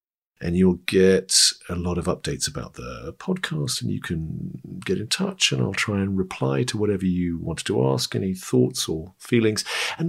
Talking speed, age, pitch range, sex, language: 190 wpm, 50-69, 85-115 Hz, male, English